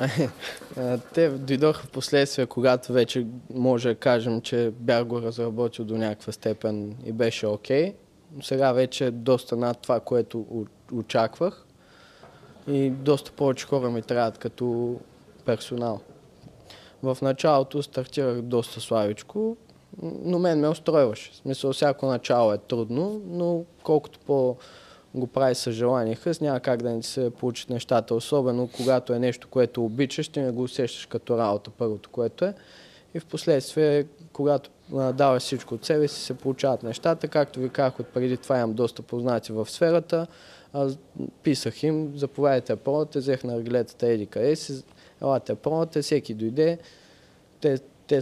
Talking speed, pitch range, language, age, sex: 135 wpm, 115-145 Hz, Bulgarian, 20-39, male